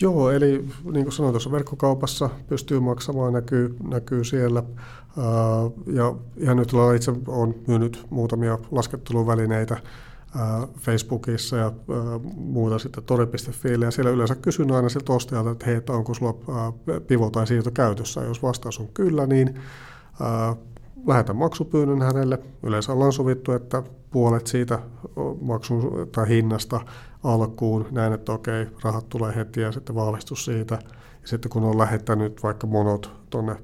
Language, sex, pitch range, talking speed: Finnish, male, 110-130 Hz, 135 wpm